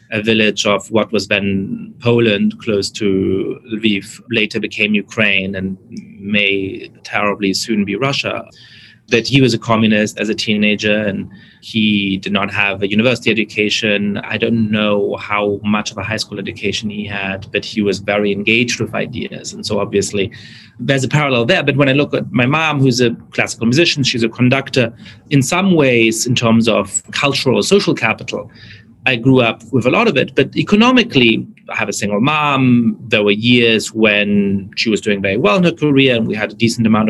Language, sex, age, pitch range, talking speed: English, male, 30-49, 105-135 Hz, 190 wpm